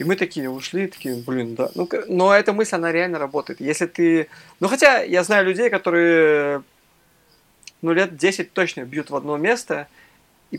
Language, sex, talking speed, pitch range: Russian, male, 175 wpm, 140-175 Hz